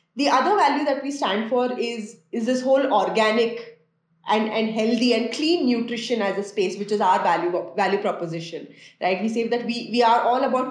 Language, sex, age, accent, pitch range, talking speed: English, female, 20-39, Indian, 200-250 Hz, 200 wpm